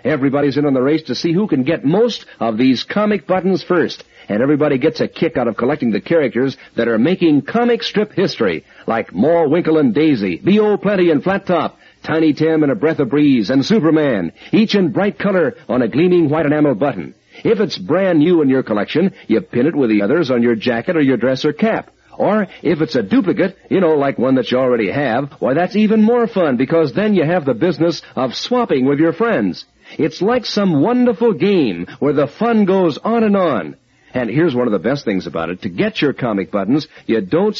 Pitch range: 140-200 Hz